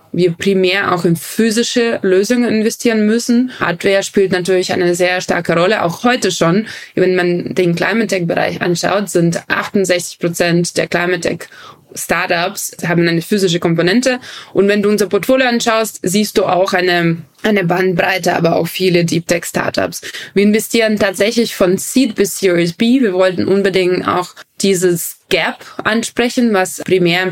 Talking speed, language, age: 145 wpm, German, 20-39